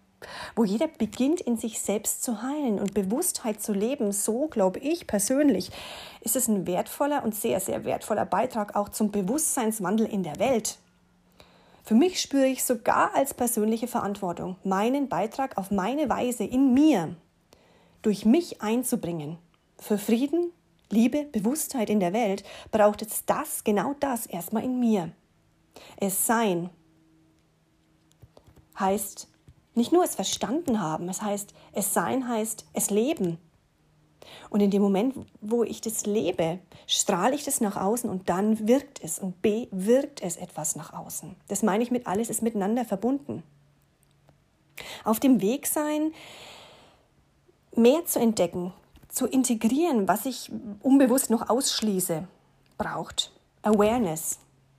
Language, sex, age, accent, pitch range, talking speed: German, female, 30-49, German, 195-250 Hz, 140 wpm